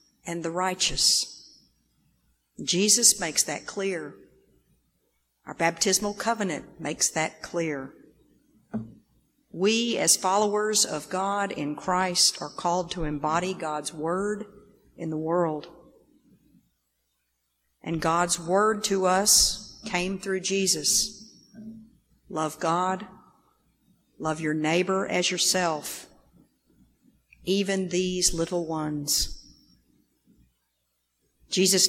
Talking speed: 90 wpm